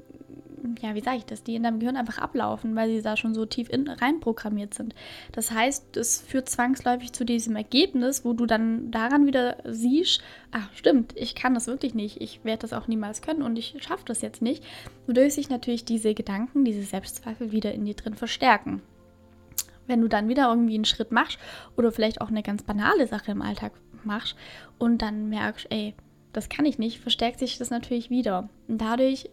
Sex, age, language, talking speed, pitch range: female, 10-29, German, 205 wpm, 220-260 Hz